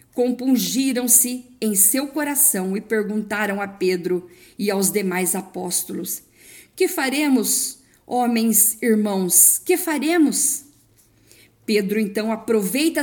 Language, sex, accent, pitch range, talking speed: Portuguese, female, Brazilian, 195-255 Hz, 95 wpm